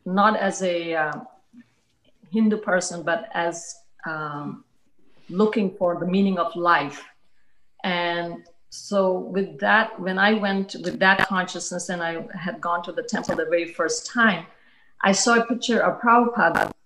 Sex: female